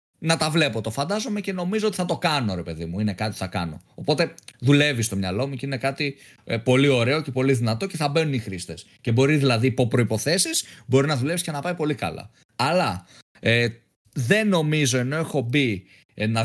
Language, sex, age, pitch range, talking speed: Greek, male, 20-39, 125-180 Hz, 215 wpm